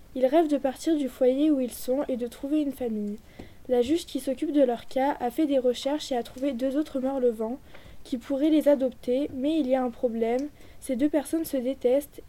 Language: French